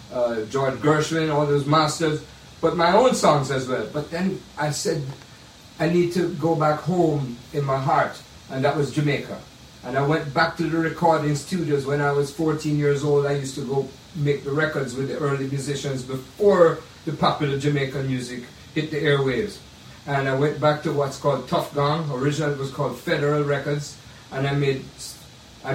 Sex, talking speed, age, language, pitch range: male, 185 wpm, 50-69, English, 135-165 Hz